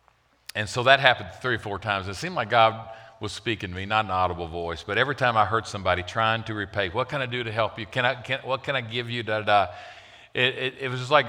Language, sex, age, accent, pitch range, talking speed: English, male, 50-69, American, 90-115 Hz, 265 wpm